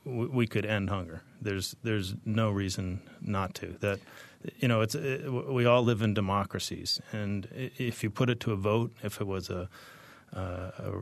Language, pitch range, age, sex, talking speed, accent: English, 100-115 Hz, 30-49, male, 185 wpm, American